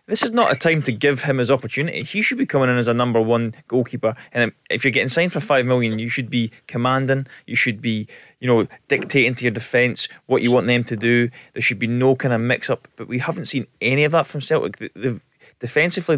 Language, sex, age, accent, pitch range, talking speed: English, male, 20-39, British, 115-140 Hz, 235 wpm